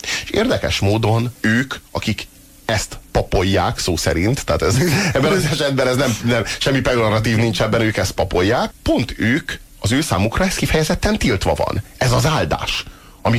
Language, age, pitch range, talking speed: Hungarian, 30-49, 95-120 Hz, 165 wpm